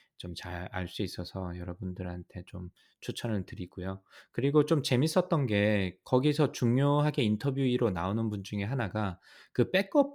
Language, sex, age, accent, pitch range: Korean, male, 20-39, native, 95-130 Hz